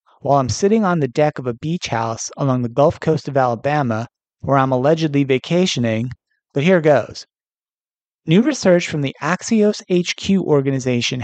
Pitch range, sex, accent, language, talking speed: 130-180 Hz, male, American, English, 160 wpm